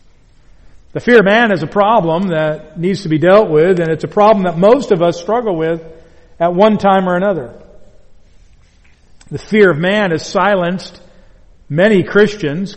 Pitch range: 150-190 Hz